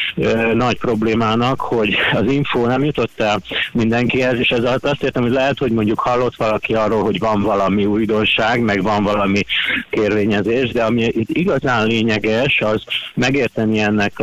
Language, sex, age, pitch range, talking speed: Hungarian, male, 50-69, 105-120 Hz, 150 wpm